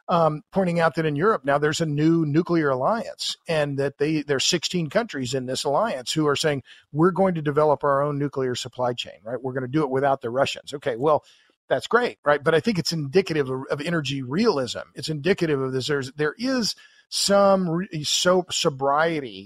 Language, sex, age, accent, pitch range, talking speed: English, male, 50-69, American, 135-165 Hz, 210 wpm